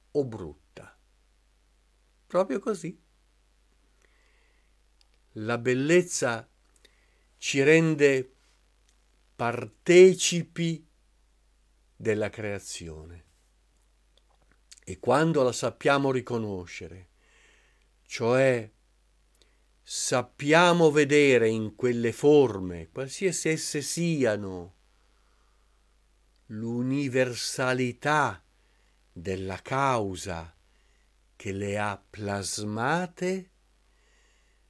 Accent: native